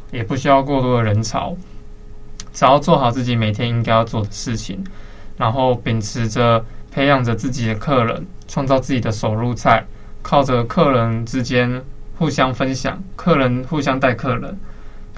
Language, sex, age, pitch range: Chinese, male, 20-39, 115-135 Hz